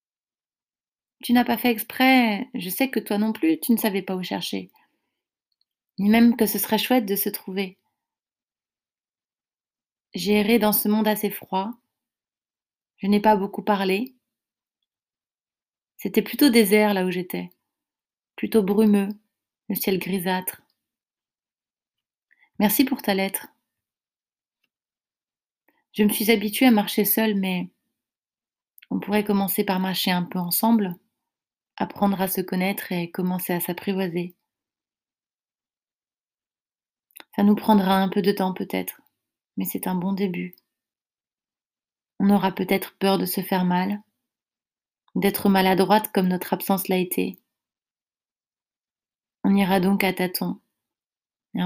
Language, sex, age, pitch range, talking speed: French, female, 30-49, 190-215 Hz, 130 wpm